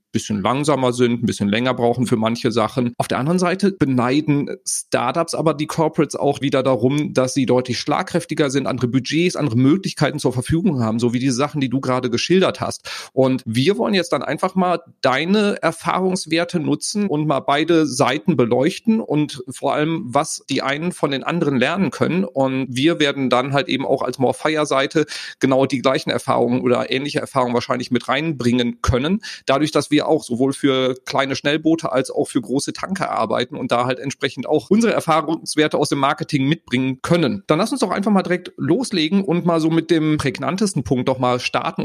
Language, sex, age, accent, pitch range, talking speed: German, male, 40-59, German, 125-165 Hz, 190 wpm